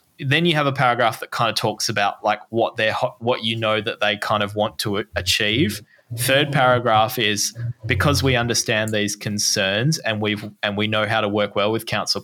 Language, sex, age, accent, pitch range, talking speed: English, male, 20-39, Australian, 105-140 Hz, 205 wpm